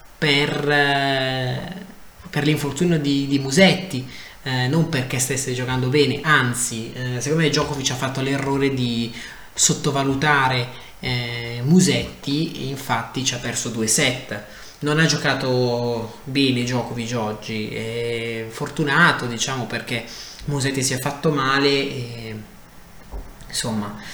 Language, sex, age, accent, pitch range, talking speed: Italian, male, 20-39, native, 115-140 Hz, 120 wpm